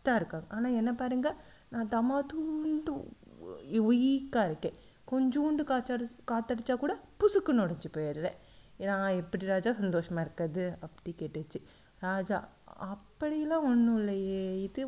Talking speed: 115 wpm